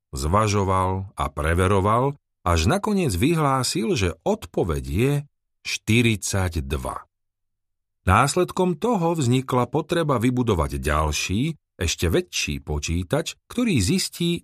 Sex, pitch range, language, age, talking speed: male, 95-140 Hz, Slovak, 40-59, 85 wpm